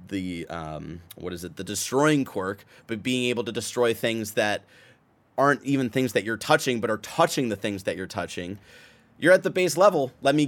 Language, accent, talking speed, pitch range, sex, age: English, American, 205 wpm, 95-120 Hz, male, 30-49